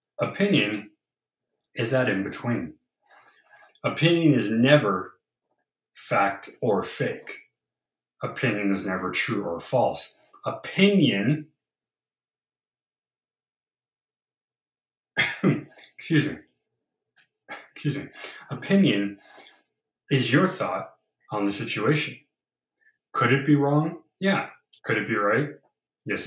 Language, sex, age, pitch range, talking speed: English, male, 30-49, 105-150 Hz, 85 wpm